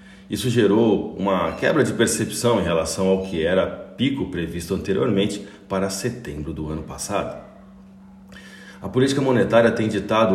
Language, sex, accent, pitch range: Portuguese, male, Brazilian, 95-110 Hz